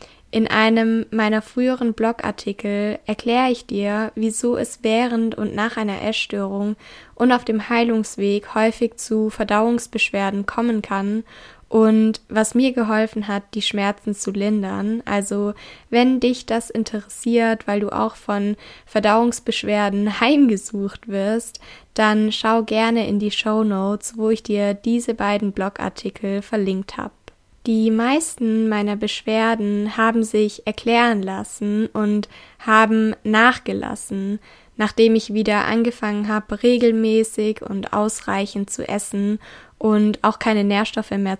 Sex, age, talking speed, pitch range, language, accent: female, 10-29, 125 wpm, 205-230 Hz, German, German